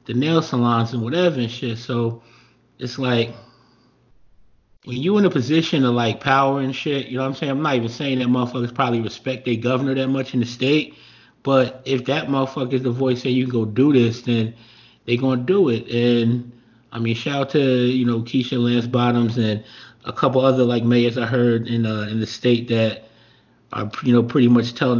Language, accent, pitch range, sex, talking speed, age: English, American, 115-130 Hz, male, 215 wpm, 30-49